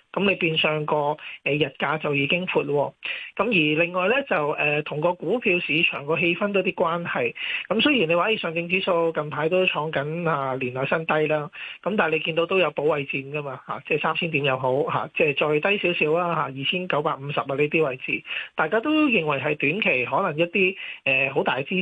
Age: 20-39